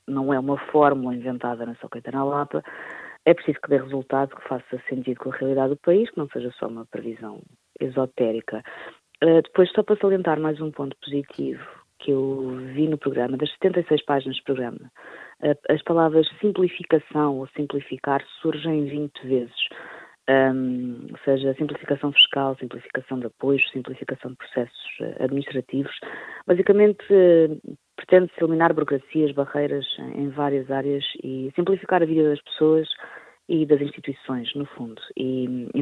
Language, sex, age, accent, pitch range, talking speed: Portuguese, female, 20-39, Portuguese, 130-155 Hz, 150 wpm